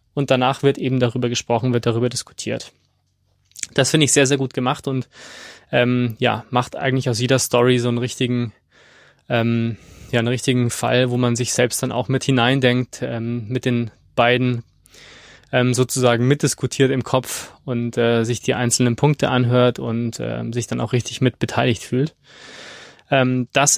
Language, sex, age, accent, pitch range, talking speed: German, male, 20-39, German, 120-140 Hz, 165 wpm